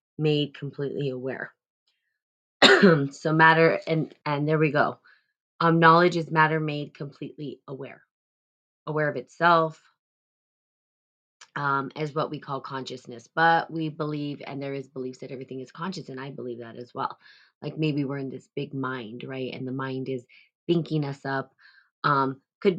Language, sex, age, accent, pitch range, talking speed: English, female, 20-39, American, 140-165 Hz, 160 wpm